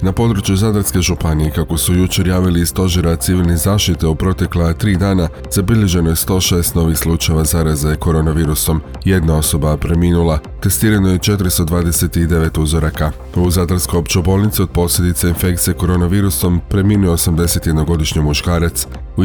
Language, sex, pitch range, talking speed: Croatian, male, 80-95 Hz, 130 wpm